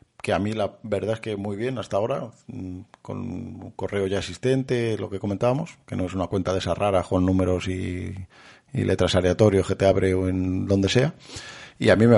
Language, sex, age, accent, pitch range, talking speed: Spanish, male, 40-59, Spanish, 95-120 Hz, 215 wpm